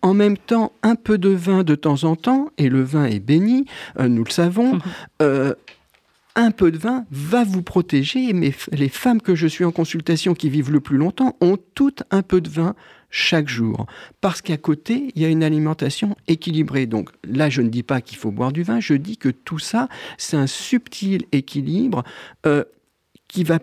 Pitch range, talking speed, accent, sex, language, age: 140-195 Hz, 205 wpm, French, male, French, 50-69